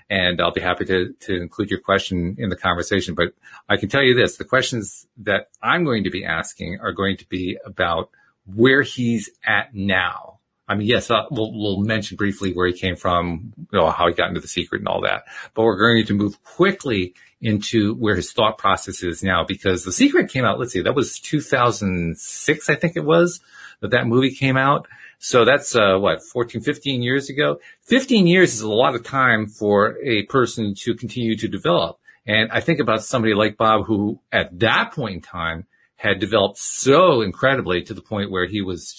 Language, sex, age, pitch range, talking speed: English, male, 40-59, 95-120 Hz, 210 wpm